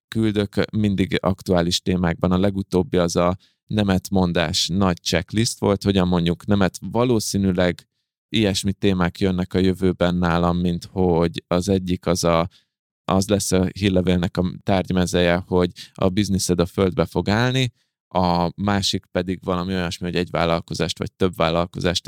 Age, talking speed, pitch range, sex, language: 20-39, 145 wpm, 90-100 Hz, male, Hungarian